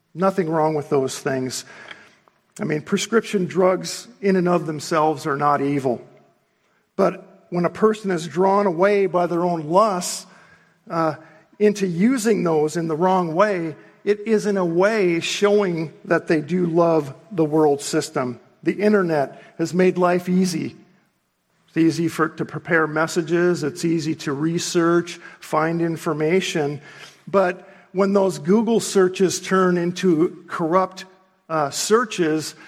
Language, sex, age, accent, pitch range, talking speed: English, male, 50-69, American, 155-190 Hz, 140 wpm